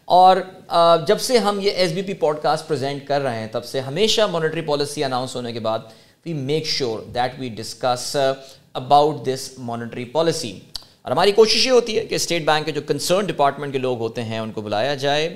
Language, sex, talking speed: Urdu, male, 205 wpm